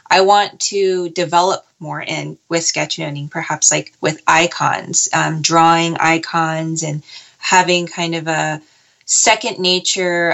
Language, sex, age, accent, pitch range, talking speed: English, female, 20-39, American, 165-200 Hz, 130 wpm